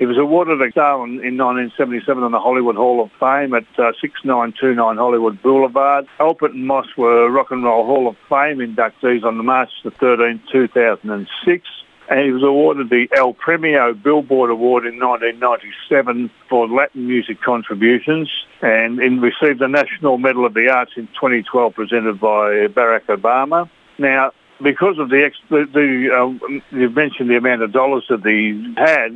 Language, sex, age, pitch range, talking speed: English, male, 60-79, 120-135 Hz, 165 wpm